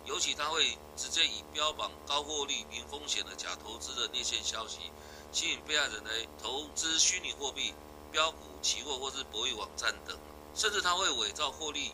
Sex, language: male, Chinese